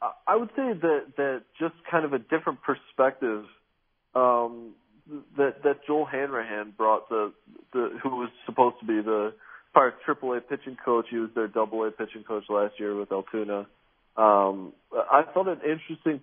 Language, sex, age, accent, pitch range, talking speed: English, male, 40-59, American, 100-130 Hz, 170 wpm